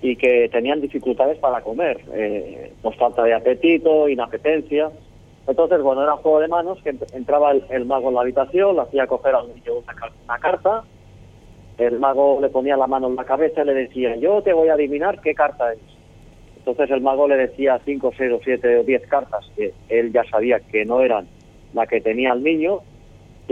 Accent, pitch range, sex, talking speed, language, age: Spanish, 120-155 Hz, male, 205 wpm, Spanish, 40-59